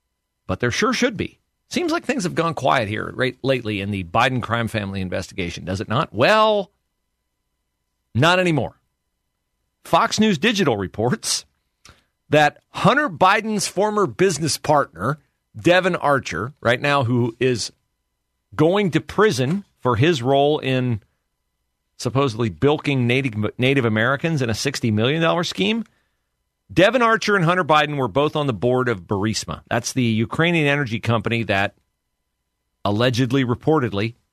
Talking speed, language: 135 wpm, English